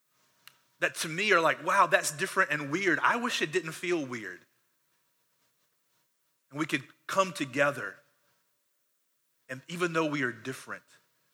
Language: English